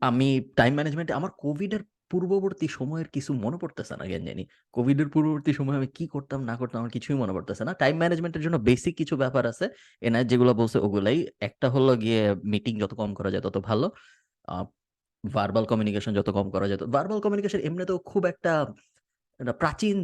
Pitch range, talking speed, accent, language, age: 105-140 Hz, 35 wpm, native, Bengali, 20-39